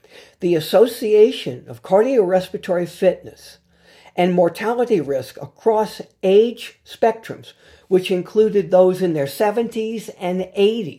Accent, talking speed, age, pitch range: American, 100 wpm, 60-79, 160-215 Hz